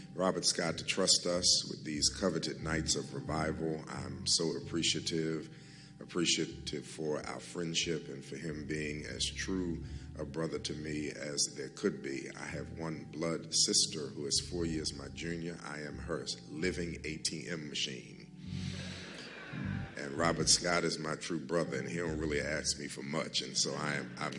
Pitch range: 75-90 Hz